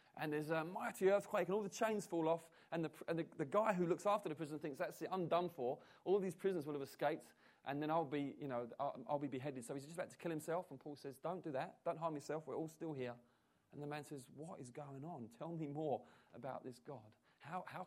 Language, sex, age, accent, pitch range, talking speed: English, male, 30-49, British, 145-210 Hz, 270 wpm